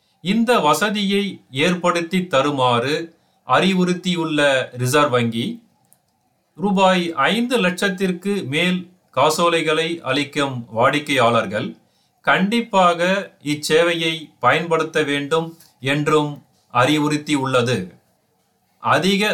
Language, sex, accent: Tamil, male, native